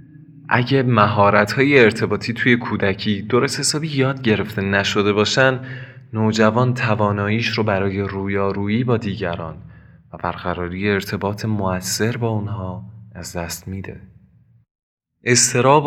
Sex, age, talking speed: male, 20-39, 105 wpm